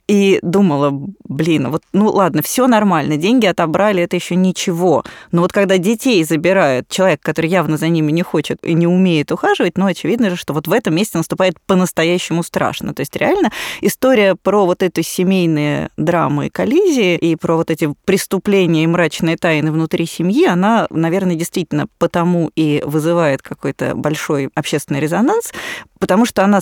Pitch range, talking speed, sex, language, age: 155-195 Hz, 165 wpm, female, Russian, 20-39